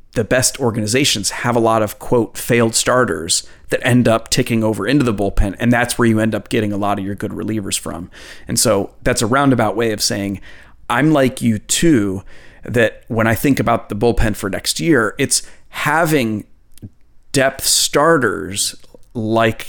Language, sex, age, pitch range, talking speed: English, male, 30-49, 110-130 Hz, 180 wpm